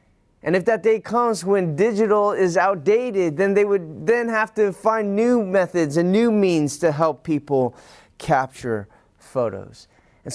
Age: 30-49